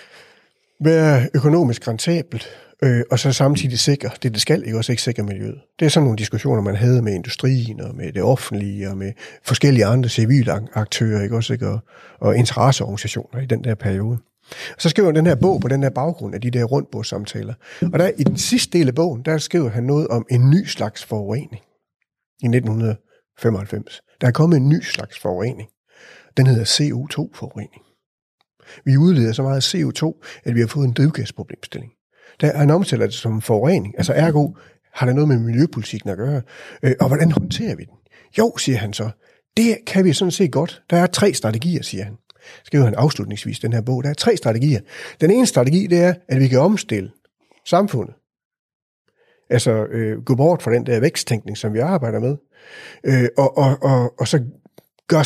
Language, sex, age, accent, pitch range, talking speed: Danish, male, 60-79, native, 115-155 Hz, 185 wpm